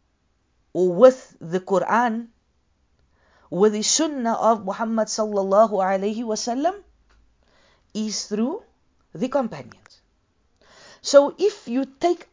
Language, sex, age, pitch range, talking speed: English, female, 50-69, 195-260 Hz, 100 wpm